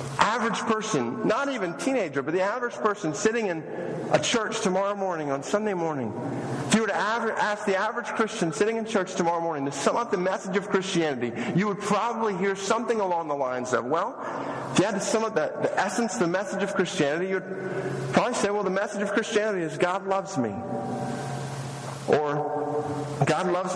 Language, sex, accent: English, male, American